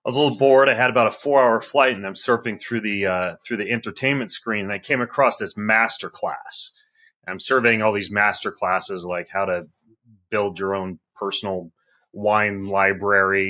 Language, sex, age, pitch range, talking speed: English, male, 30-49, 100-140 Hz, 180 wpm